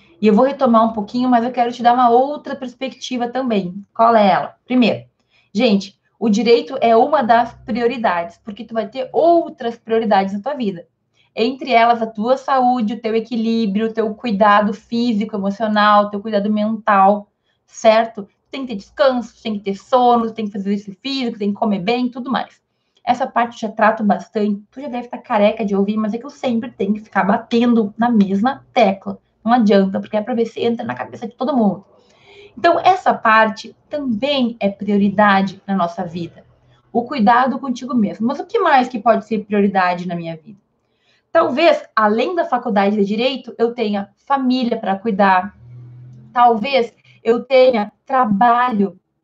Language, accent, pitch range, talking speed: Portuguese, Brazilian, 205-245 Hz, 185 wpm